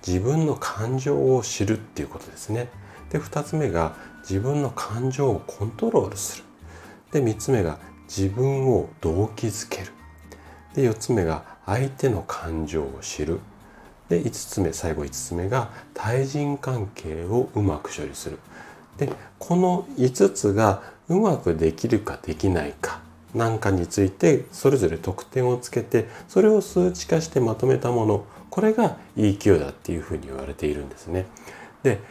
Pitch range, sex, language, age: 85-135 Hz, male, Japanese, 40-59